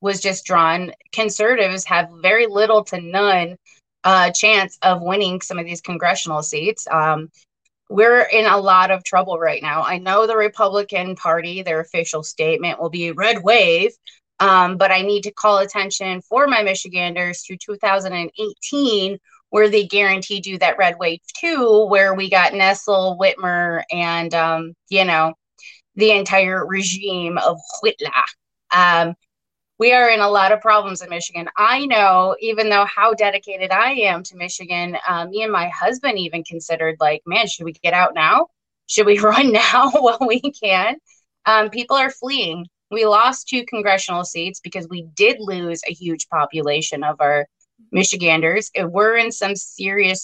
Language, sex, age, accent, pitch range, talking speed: English, female, 20-39, American, 175-215 Hz, 165 wpm